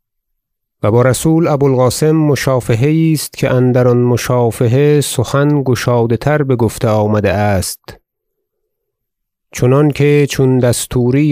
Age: 30-49